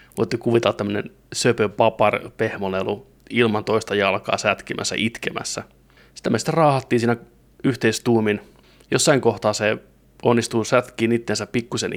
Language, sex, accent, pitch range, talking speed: Finnish, male, native, 105-120 Hz, 110 wpm